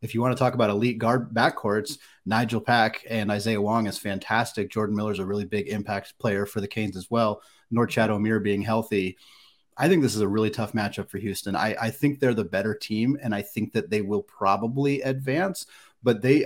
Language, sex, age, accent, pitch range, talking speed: English, male, 30-49, American, 100-115 Hz, 215 wpm